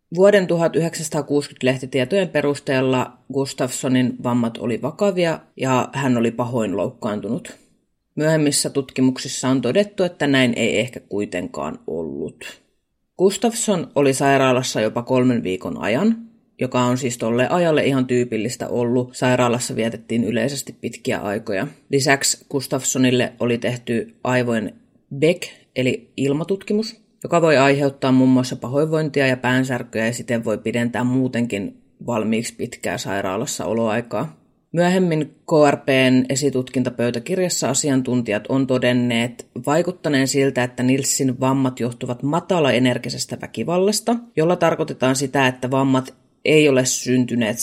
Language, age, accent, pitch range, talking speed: Finnish, 30-49, native, 120-150 Hz, 115 wpm